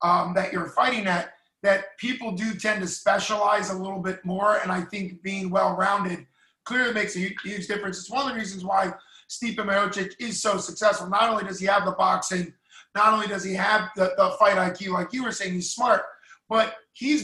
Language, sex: English, male